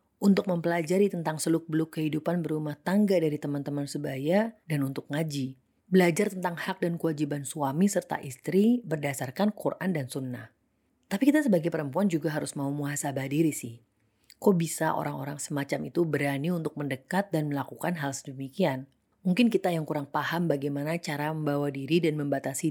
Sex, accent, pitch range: female, native, 140-180 Hz